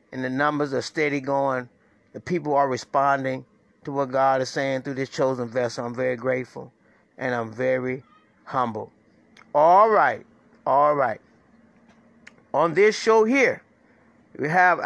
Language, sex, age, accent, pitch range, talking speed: English, male, 30-49, American, 130-165 Hz, 145 wpm